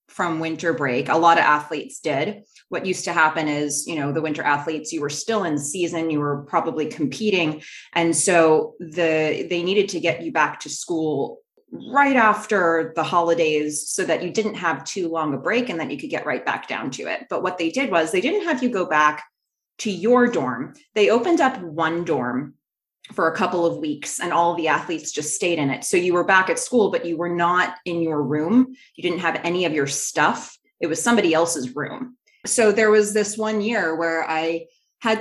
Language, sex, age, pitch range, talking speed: English, female, 20-39, 160-215 Hz, 215 wpm